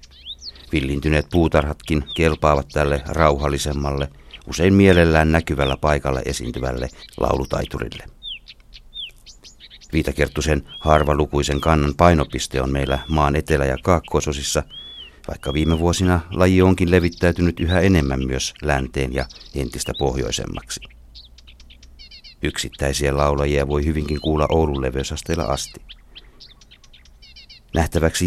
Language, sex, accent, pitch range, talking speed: Finnish, male, native, 70-80 Hz, 90 wpm